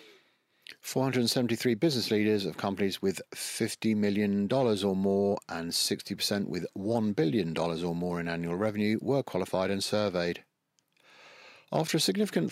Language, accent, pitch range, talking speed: English, British, 95-130 Hz, 130 wpm